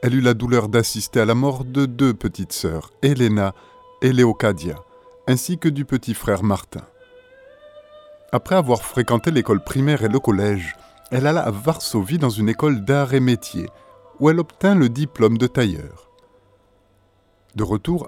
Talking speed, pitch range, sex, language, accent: 160 wpm, 110-165 Hz, male, French, French